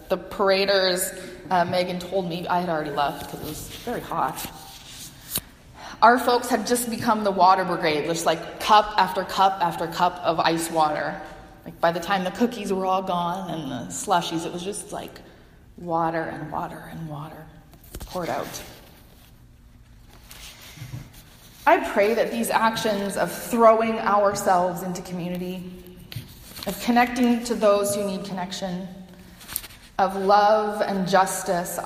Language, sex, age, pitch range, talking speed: English, female, 20-39, 170-200 Hz, 145 wpm